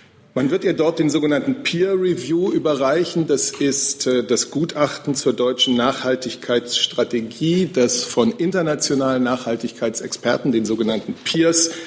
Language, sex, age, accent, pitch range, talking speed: German, male, 40-59, German, 115-155 Hz, 120 wpm